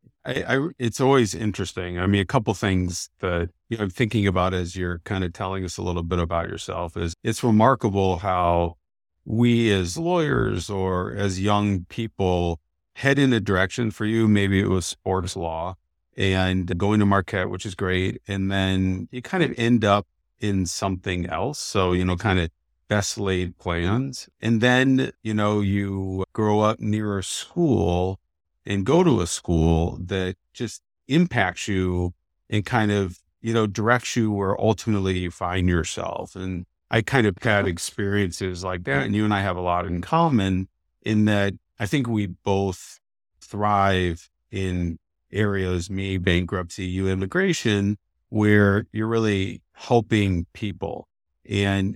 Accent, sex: American, male